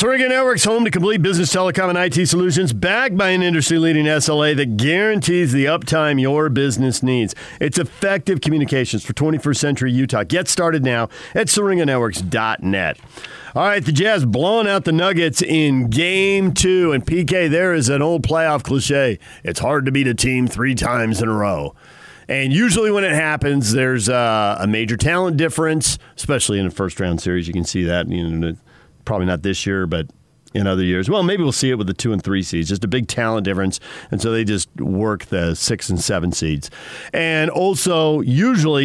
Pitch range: 105-160 Hz